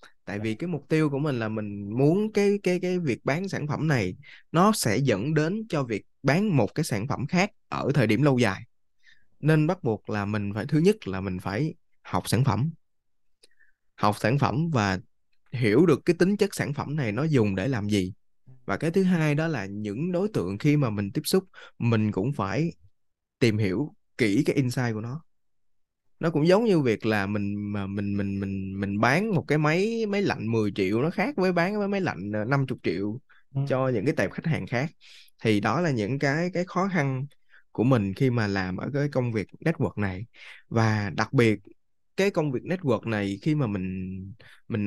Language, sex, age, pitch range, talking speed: Vietnamese, male, 20-39, 105-160 Hz, 210 wpm